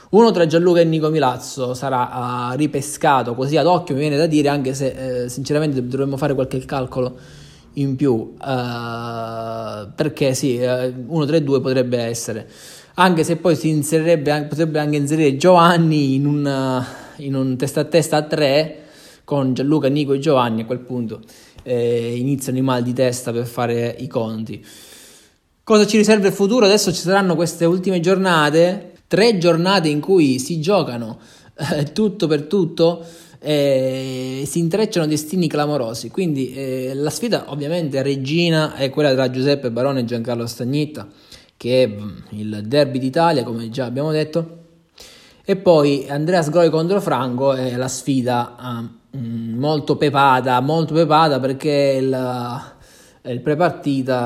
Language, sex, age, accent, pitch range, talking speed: Italian, male, 20-39, native, 125-160 Hz, 155 wpm